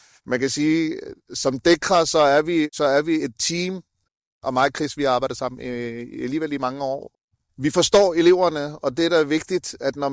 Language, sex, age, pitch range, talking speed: Danish, male, 30-49, 135-155 Hz, 200 wpm